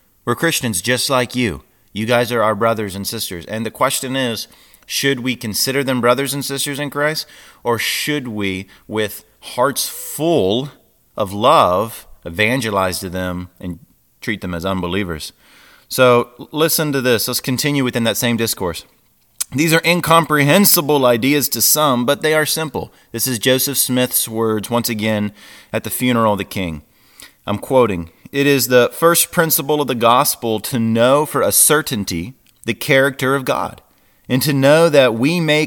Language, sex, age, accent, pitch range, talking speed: English, male, 30-49, American, 110-140 Hz, 165 wpm